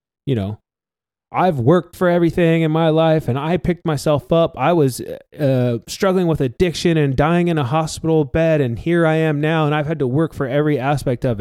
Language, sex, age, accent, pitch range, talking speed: English, male, 20-39, American, 125-165 Hz, 210 wpm